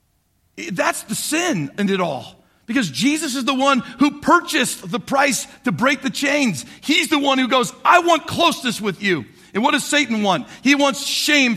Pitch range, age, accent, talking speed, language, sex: 185-250 Hz, 50-69, American, 190 wpm, English, male